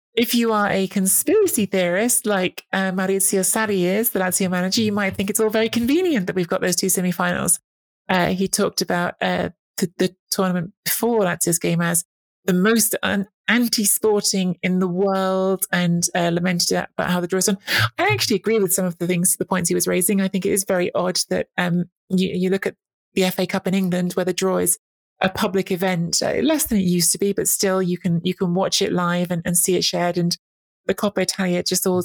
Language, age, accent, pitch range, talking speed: English, 20-39, British, 175-195 Hz, 225 wpm